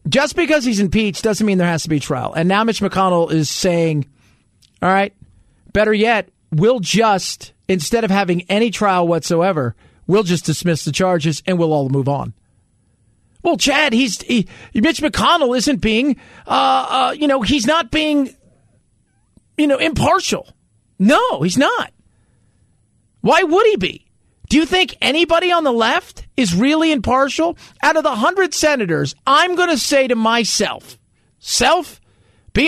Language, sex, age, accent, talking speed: English, male, 40-59, American, 160 wpm